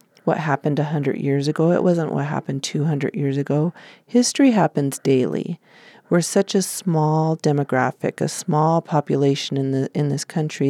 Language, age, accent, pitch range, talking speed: English, 40-59, American, 145-180 Hz, 150 wpm